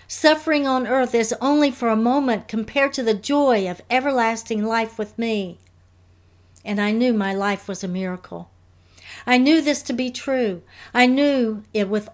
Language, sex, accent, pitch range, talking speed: English, female, American, 185-250 Hz, 175 wpm